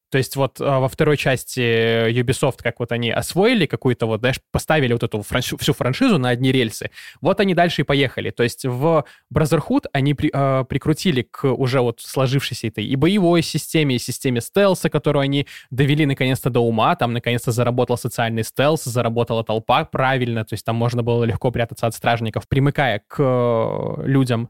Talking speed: 180 wpm